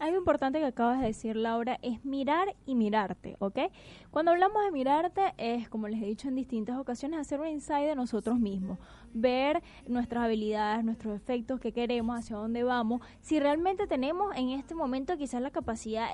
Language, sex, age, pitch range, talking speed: Spanish, female, 10-29, 240-315 Hz, 180 wpm